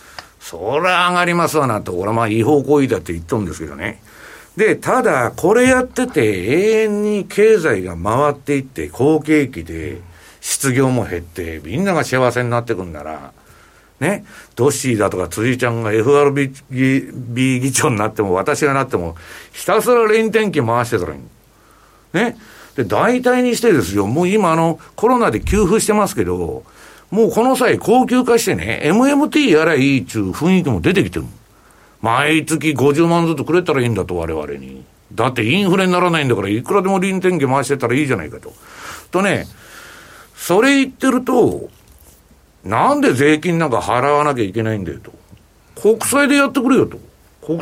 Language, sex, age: Japanese, male, 60-79